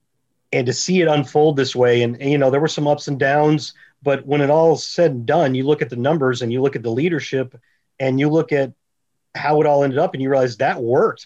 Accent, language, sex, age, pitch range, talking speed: American, English, male, 40-59, 125-160 Hz, 260 wpm